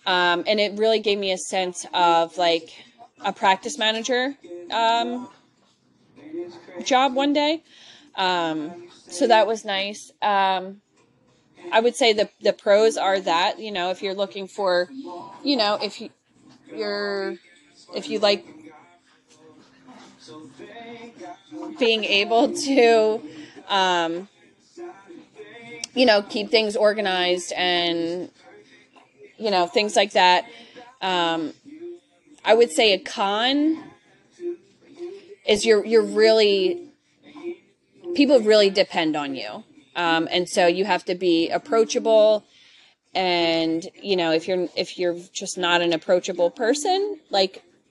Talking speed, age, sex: 120 wpm, 20-39, female